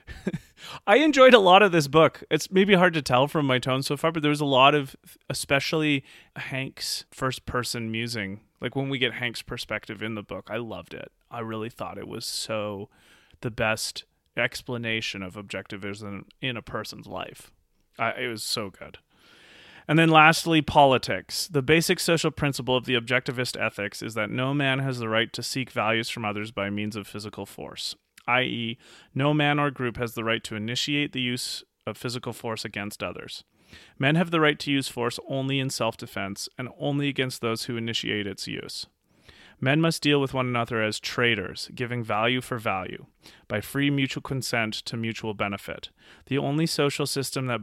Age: 30-49